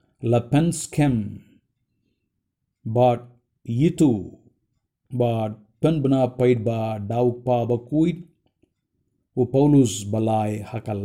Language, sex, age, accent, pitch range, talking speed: Indonesian, male, 50-69, Indian, 110-140 Hz, 65 wpm